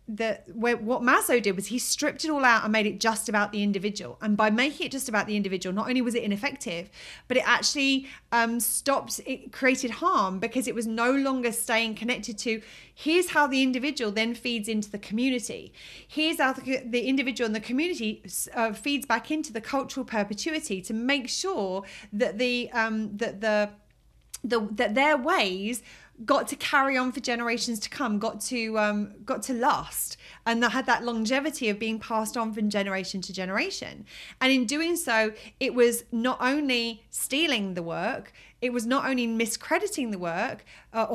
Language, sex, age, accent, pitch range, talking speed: English, female, 30-49, British, 215-265 Hz, 185 wpm